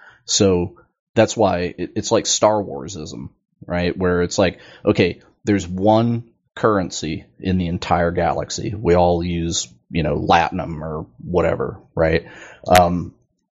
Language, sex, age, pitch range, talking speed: English, male, 30-49, 85-100 Hz, 130 wpm